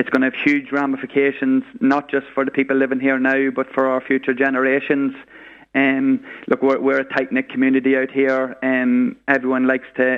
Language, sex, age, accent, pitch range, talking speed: English, male, 20-39, Irish, 130-135 Hz, 190 wpm